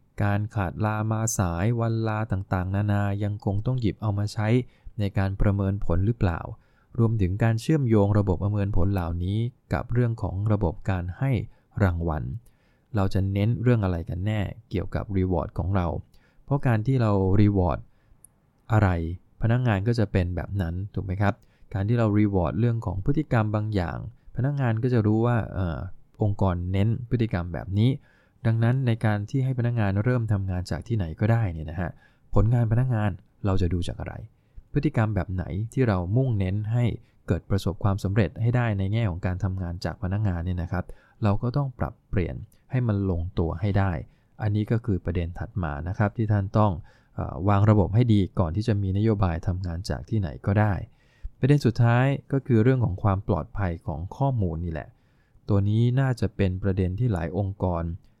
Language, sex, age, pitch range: English, male, 20-39, 95-115 Hz